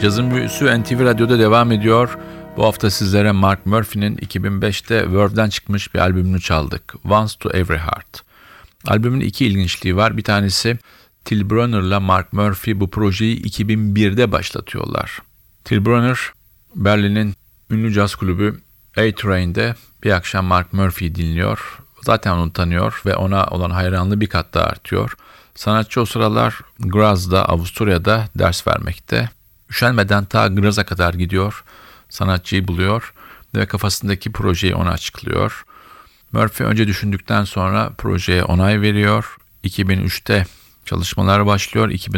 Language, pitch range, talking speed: Turkish, 95-110 Hz, 125 wpm